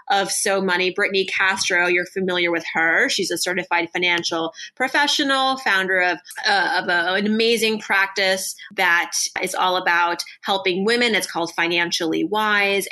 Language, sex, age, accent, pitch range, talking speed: English, female, 30-49, American, 180-220 Hz, 150 wpm